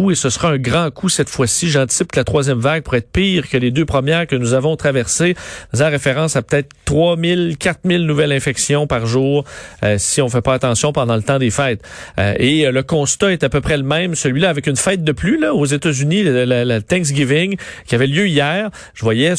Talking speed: 240 wpm